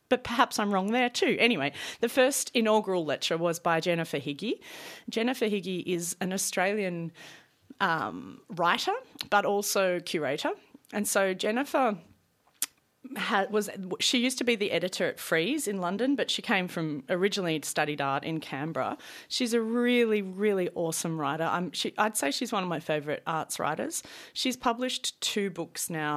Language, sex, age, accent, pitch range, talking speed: English, female, 30-49, Australian, 160-215 Hz, 160 wpm